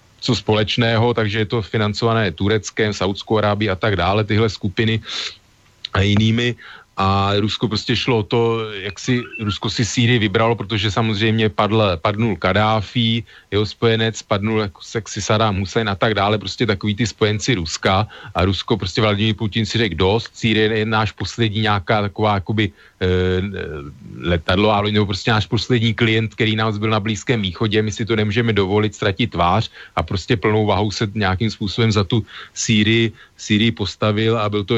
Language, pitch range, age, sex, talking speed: Slovak, 100-115 Hz, 40-59, male, 165 wpm